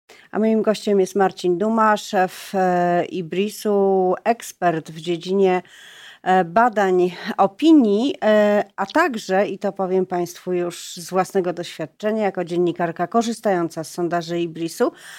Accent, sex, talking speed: native, female, 115 wpm